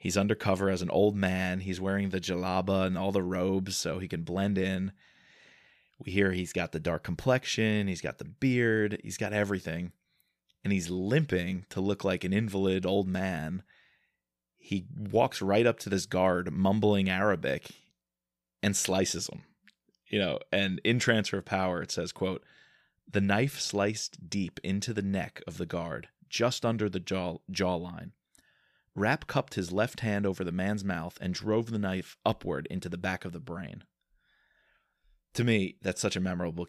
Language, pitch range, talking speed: English, 90-105 Hz, 175 wpm